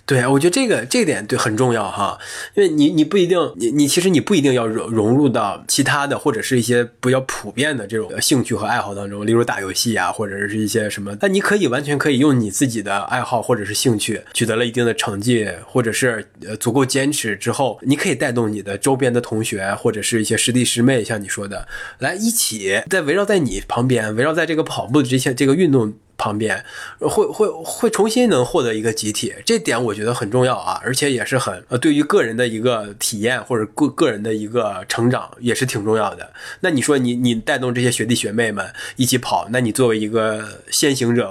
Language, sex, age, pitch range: Chinese, male, 20-39, 115-145 Hz